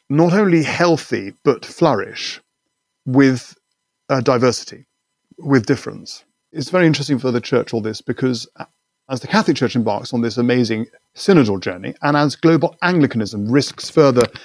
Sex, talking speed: male, 145 wpm